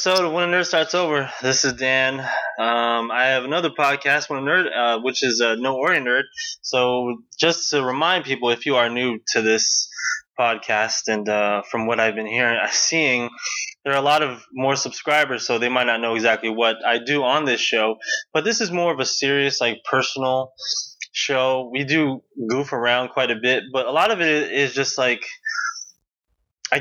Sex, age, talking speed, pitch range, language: male, 20-39, 200 wpm, 115-140 Hz, English